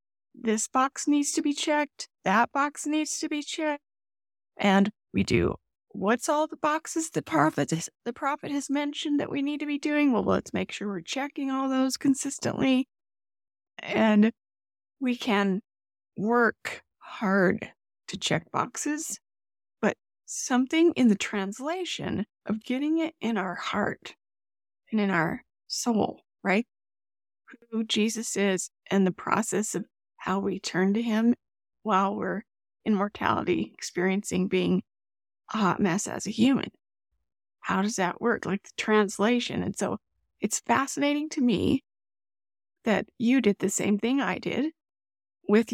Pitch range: 185-280 Hz